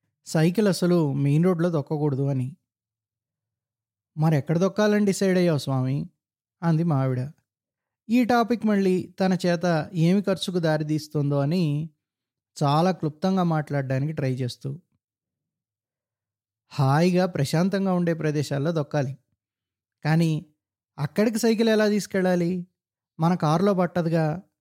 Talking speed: 100 wpm